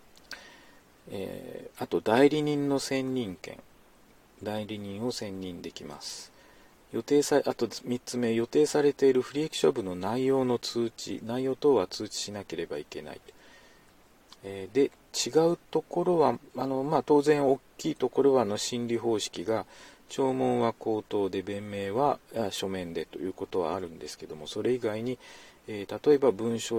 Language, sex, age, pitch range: Japanese, male, 40-59, 100-135 Hz